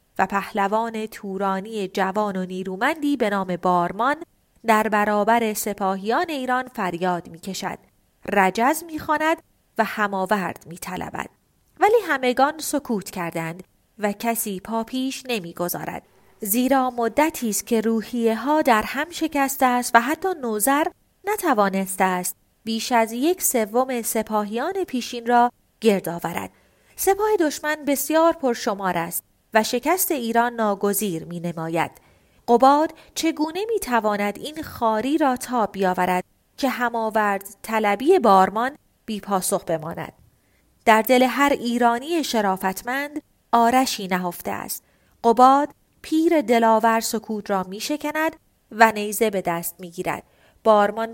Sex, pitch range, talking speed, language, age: female, 200-275 Hz, 120 wpm, Persian, 30-49